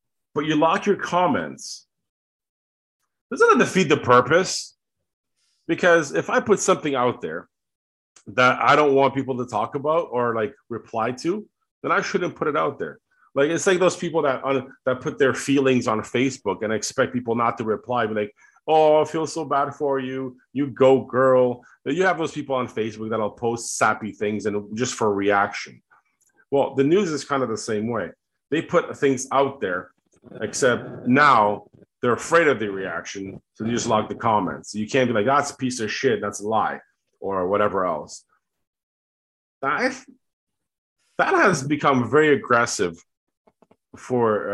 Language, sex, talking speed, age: English, male, 175 wpm, 30-49